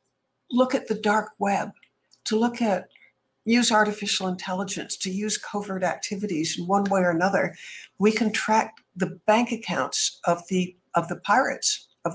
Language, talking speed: English, 160 wpm